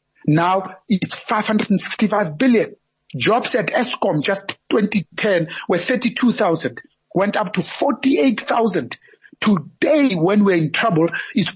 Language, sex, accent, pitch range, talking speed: English, male, South African, 170-230 Hz, 110 wpm